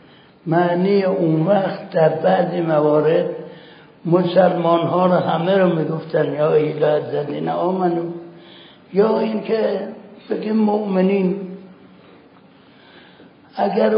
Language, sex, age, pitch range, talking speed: Persian, male, 60-79, 165-200 Hz, 95 wpm